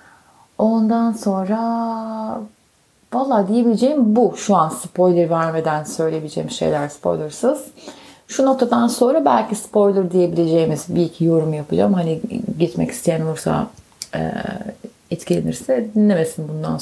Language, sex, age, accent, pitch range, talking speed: Turkish, female, 30-49, native, 165-230 Hz, 105 wpm